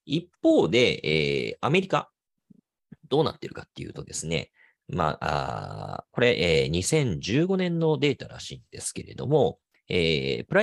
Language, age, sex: Japanese, 40-59, male